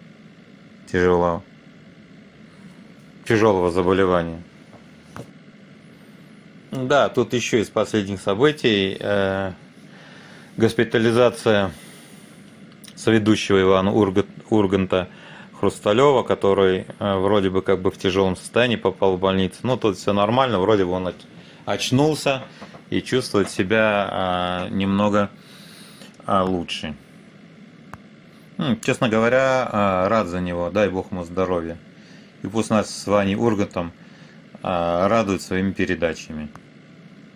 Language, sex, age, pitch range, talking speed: Russian, male, 30-49, 95-140 Hz, 100 wpm